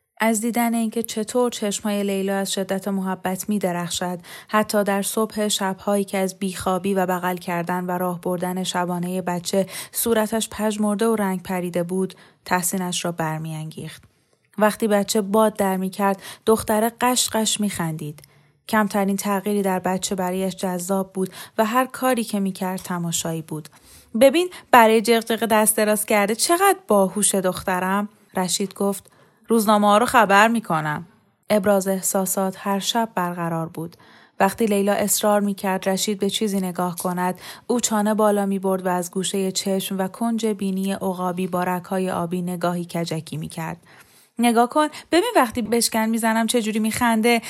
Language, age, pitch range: Persian, 30-49, 180-220 Hz